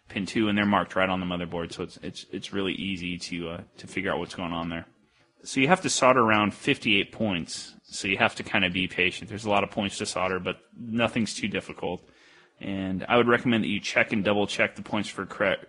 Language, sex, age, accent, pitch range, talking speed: English, male, 30-49, American, 95-110 Hz, 245 wpm